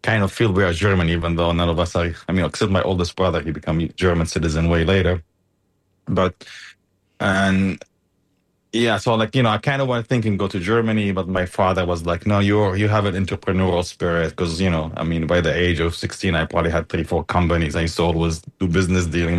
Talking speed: 230 wpm